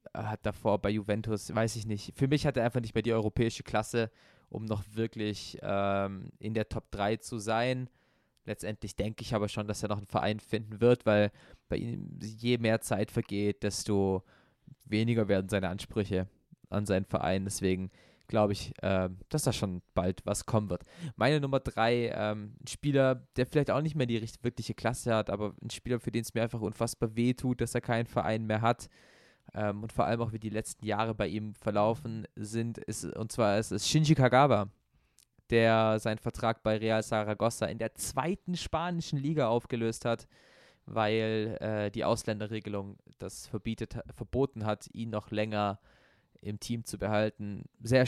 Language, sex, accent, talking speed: German, male, German, 175 wpm